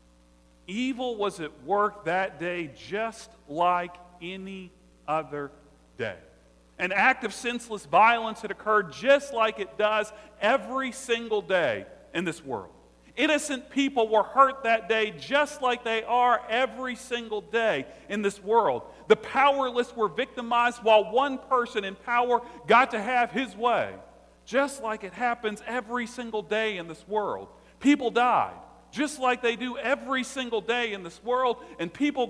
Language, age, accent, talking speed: English, 40-59, American, 150 wpm